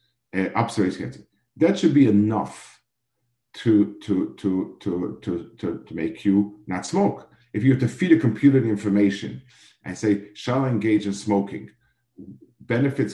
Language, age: English, 50-69